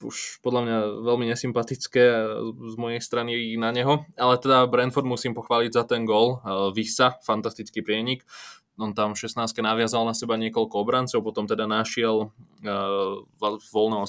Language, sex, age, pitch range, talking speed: Slovak, male, 20-39, 110-125 Hz, 145 wpm